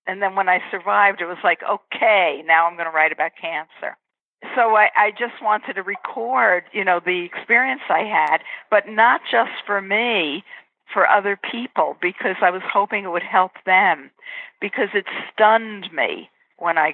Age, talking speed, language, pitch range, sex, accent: 60-79, 180 wpm, English, 175-215 Hz, female, American